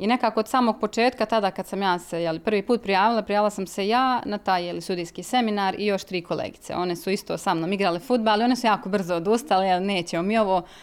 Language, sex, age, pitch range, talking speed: Croatian, female, 20-39, 185-220 Hz, 240 wpm